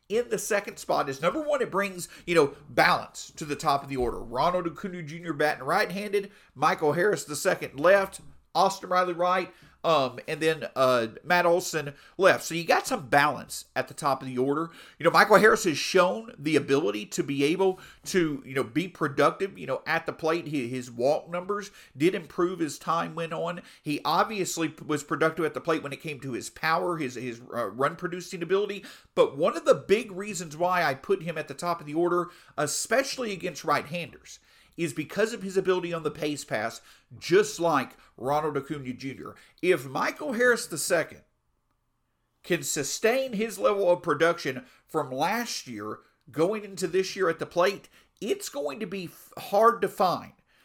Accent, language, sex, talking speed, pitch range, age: American, English, male, 190 wpm, 150-195 Hz, 40-59